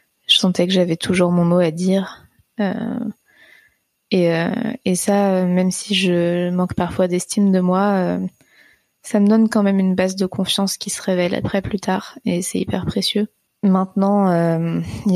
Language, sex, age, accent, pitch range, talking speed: French, female, 20-39, French, 180-200 Hz, 180 wpm